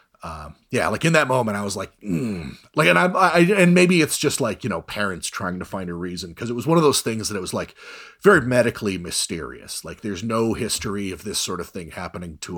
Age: 30-49